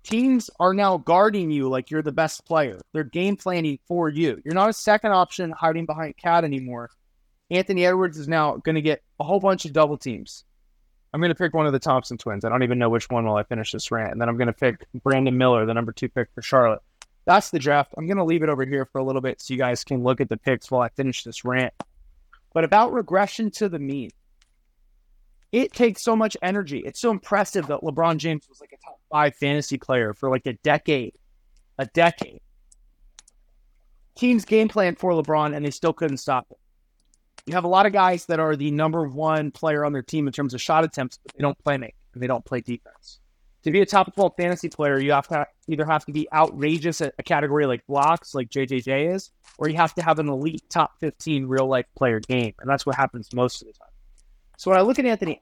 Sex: male